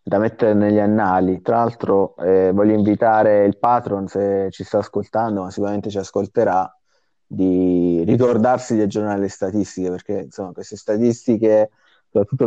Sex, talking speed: male, 145 wpm